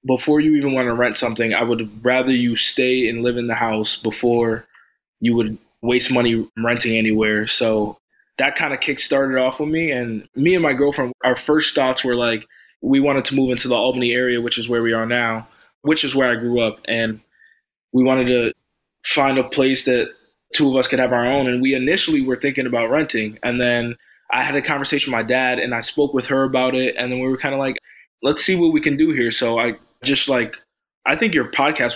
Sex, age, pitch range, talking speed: male, 20-39, 115-135 Hz, 230 wpm